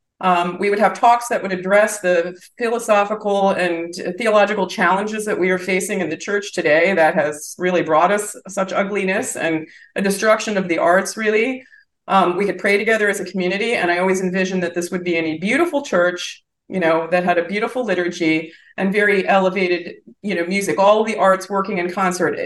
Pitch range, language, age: 180-225 Hz, English, 40-59